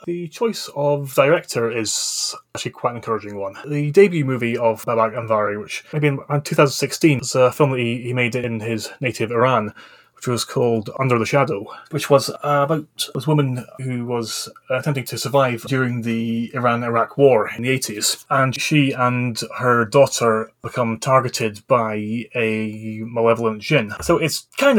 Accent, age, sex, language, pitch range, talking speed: British, 20-39, male, English, 115-135 Hz, 165 wpm